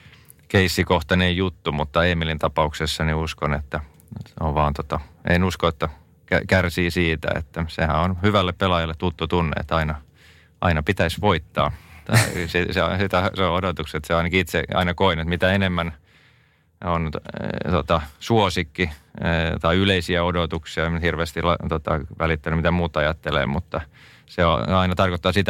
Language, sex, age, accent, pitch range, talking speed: Finnish, male, 30-49, native, 80-90 Hz, 140 wpm